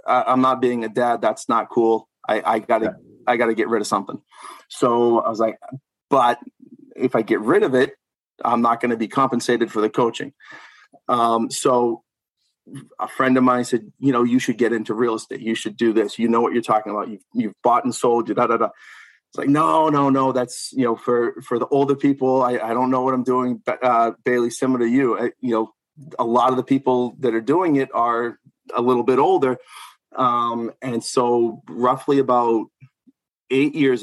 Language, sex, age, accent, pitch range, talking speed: English, male, 30-49, American, 115-130 Hz, 210 wpm